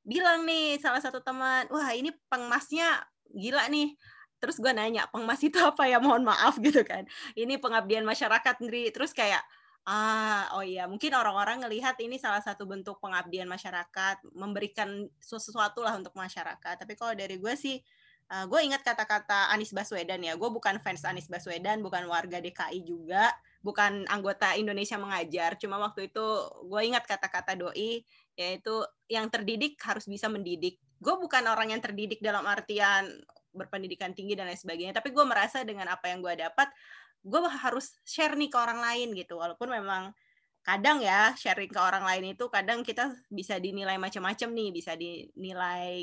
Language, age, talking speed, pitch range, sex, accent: Indonesian, 20-39, 165 wpm, 190-245 Hz, female, native